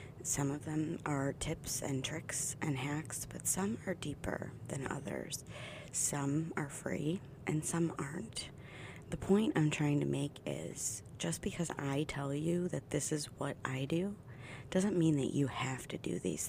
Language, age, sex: English, 30-49, female